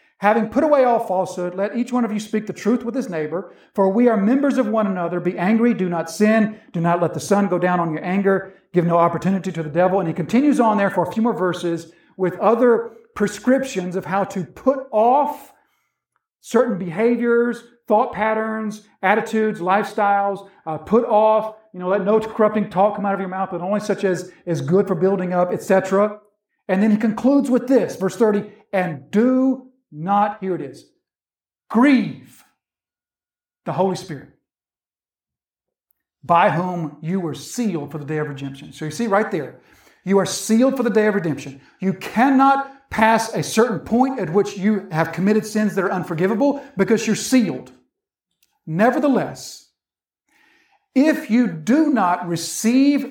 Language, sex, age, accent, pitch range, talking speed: English, male, 50-69, American, 180-230 Hz, 180 wpm